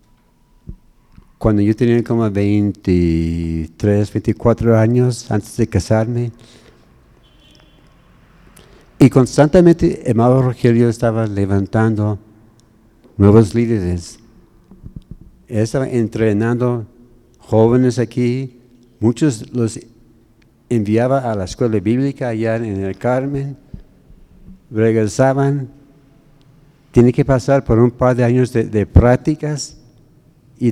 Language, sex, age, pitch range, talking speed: Spanish, male, 60-79, 110-140 Hz, 90 wpm